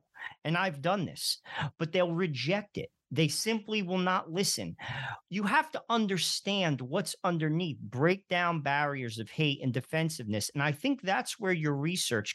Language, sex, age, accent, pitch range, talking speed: English, male, 40-59, American, 140-195 Hz, 160 wpm